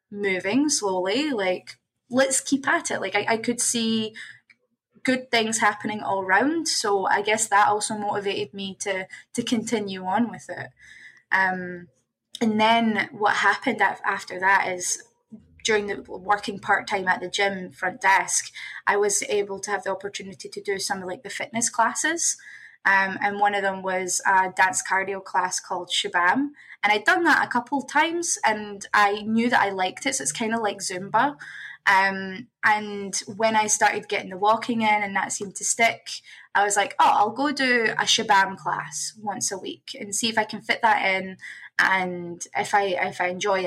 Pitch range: 190-230 Hz